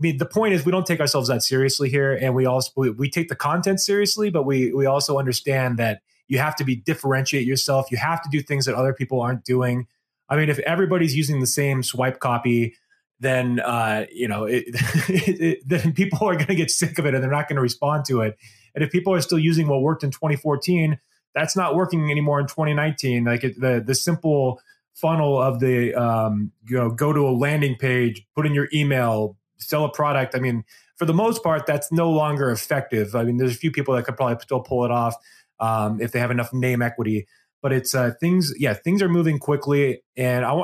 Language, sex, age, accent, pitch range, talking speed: English, male, 30-49, American, 125-155 Hz, 230 wpm